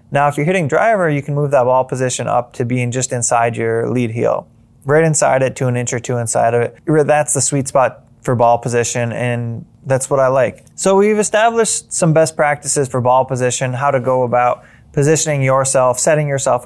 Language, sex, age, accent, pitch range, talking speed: English, male, 20-39, American, 120-145 Hz, 215 wpm